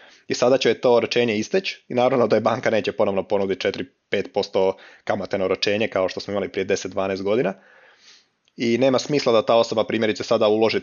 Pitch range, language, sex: 105-120 Hz, Croatian, male